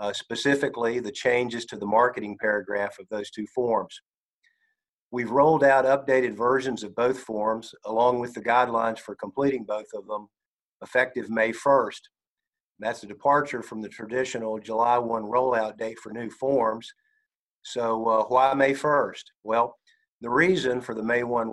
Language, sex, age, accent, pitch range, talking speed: English, male, 50-69, American, 110-135 Hz, 160 wpm